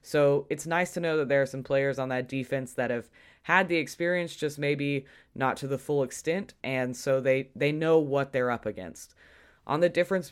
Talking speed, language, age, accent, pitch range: 215 wpm, English, 20-39, American, 130-150 Hz